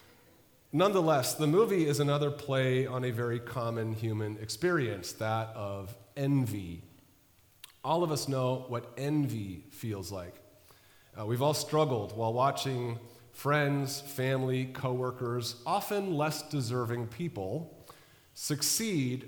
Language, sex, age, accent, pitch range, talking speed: English, male, 30-49, American, 110-140 Hz, 115 wpm